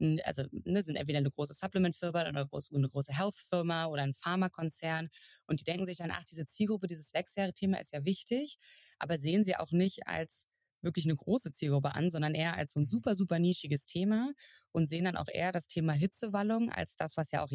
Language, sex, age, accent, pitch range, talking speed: German, female, 20-39, German, 145-180 Hz, 210 wpm